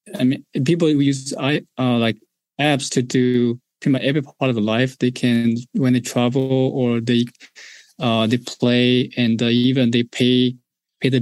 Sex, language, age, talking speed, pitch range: male, English, 20-39, 165 wpm, 120-135 Hz